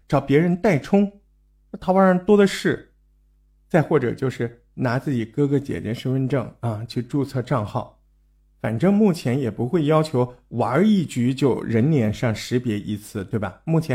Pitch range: 100-160 Hz